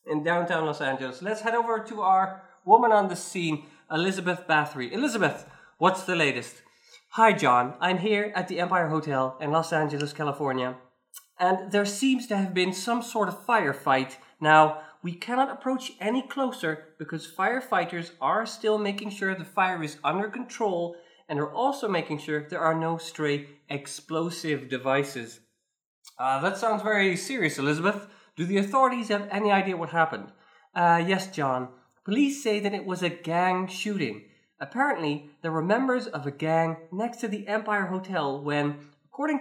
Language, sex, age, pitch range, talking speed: English, male, 20-39, 150-215 Hz, 165 wpm